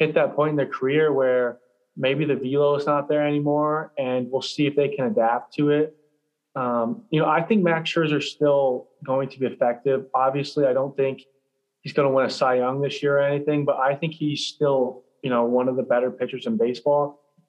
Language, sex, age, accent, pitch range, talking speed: English, male, 20-39, American, 130-155 Hz, 225 wpm